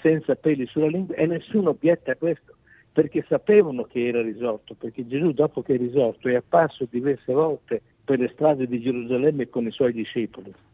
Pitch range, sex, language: 120-160 Hz, male, Italian